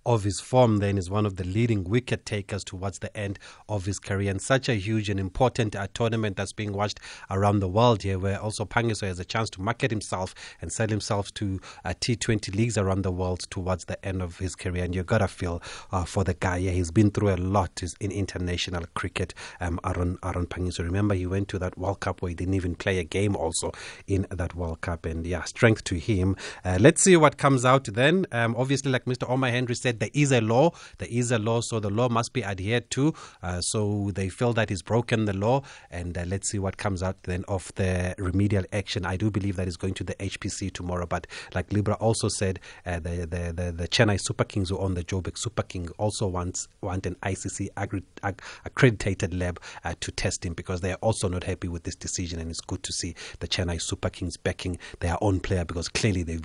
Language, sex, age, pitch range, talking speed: English, male, 30-49, 90-110 Hz, 235 wpm